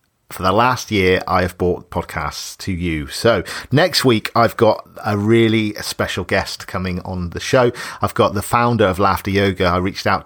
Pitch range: 95-120 Hz